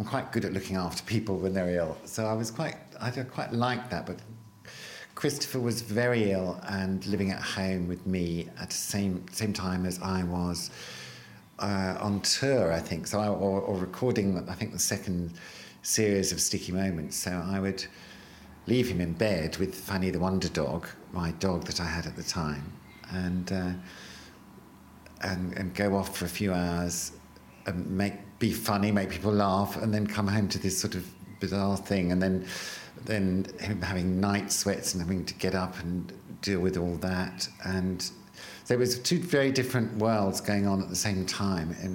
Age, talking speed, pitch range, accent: 50-69, 190 wpm, 90-105 Hz, British